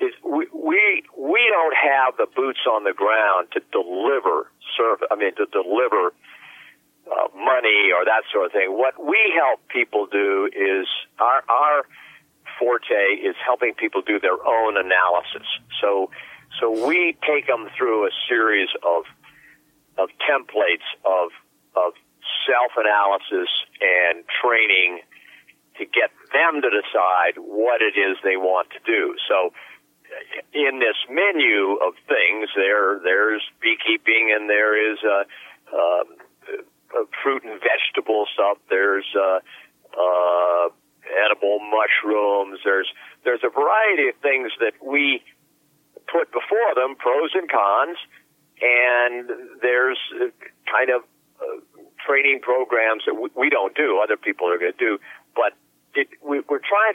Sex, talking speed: male, 140 wpm